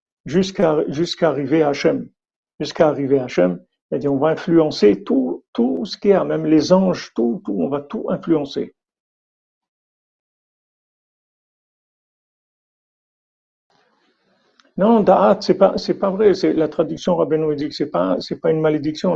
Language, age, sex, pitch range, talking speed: French, 50-69, male, 140-170 Hz, 140 wpm